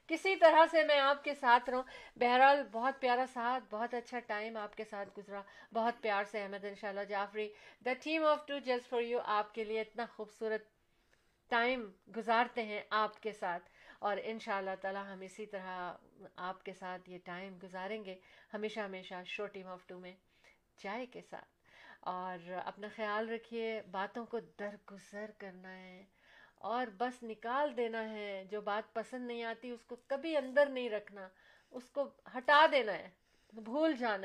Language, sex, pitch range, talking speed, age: Urdu, female, 190-240 Hz, 170 wpm, 50-69